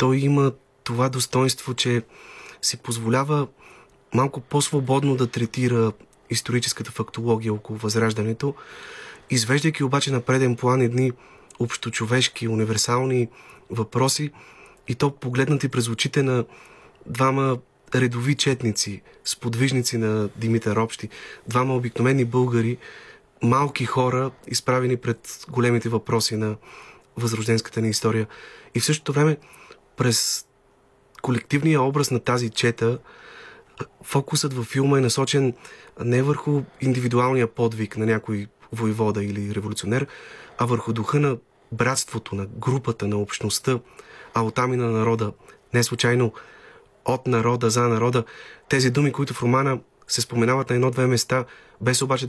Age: 30-49